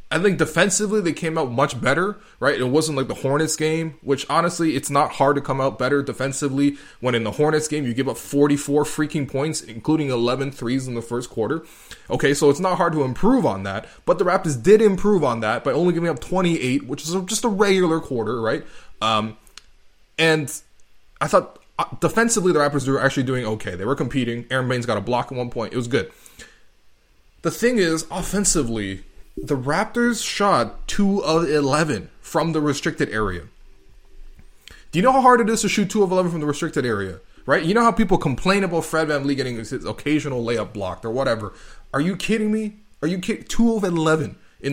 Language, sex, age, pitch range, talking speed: English, male, 20-39, 125-170 Hz, 205 wpm